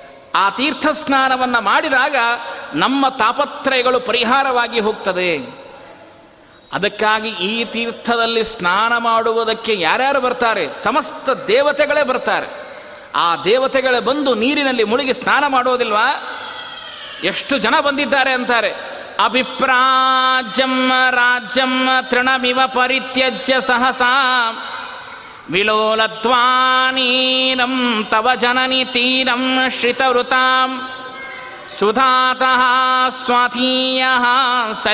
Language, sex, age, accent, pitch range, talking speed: Kannada, male, 30-49, native, 245-260 Hz, 65 wpm